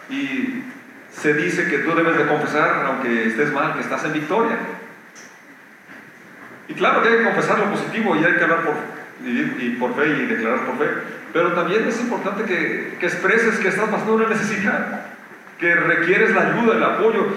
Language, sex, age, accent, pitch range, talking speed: Spanish, male, 40-59, Mexican, 150-225 Hz, 185 wpm